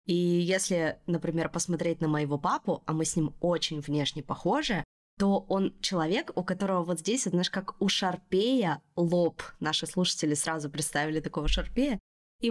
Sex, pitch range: female, 165-205 Hz